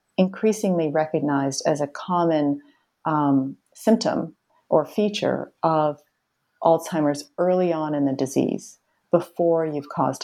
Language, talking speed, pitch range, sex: English, 110 wpm, 145-180 Hz, female